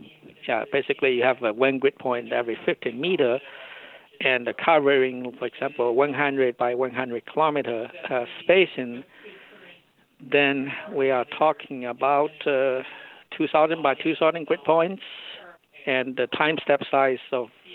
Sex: male